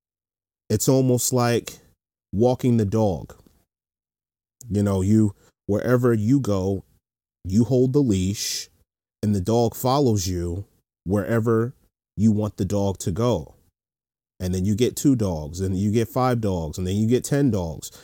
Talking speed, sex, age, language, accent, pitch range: 150 wpm, male, 30-49, English, American, 90-120 Hz